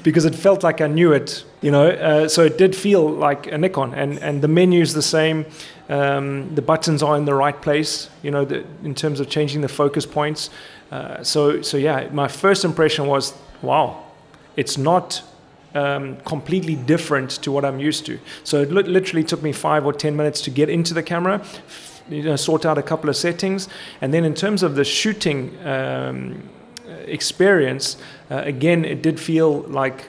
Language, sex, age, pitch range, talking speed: Dutch, male, 30-49, 140-165 Hz, 195 wpm